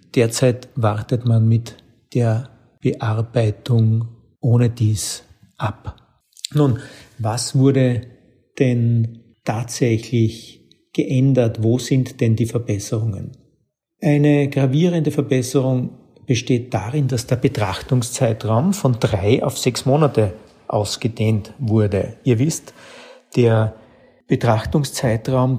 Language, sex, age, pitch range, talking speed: German, male, 50-69, 110-135 Hz, 90 wpm